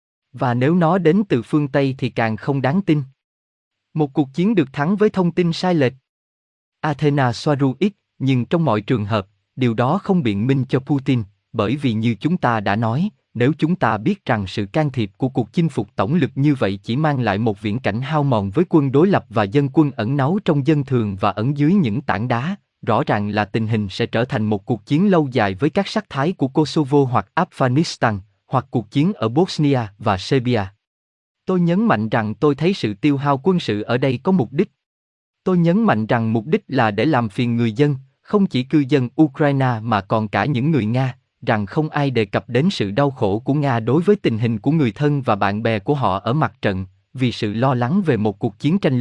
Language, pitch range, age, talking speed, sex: Vietnamese, 110-155 Hz, 20-39, 230 wpm, male